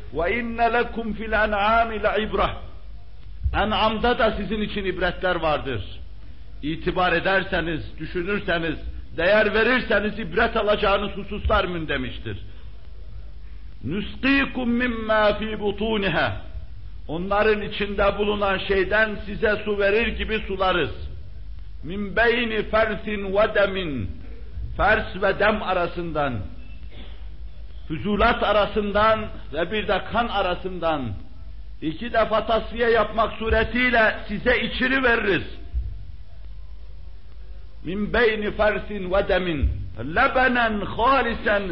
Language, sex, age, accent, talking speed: Turkish, male, 60-79, native, 90 wpm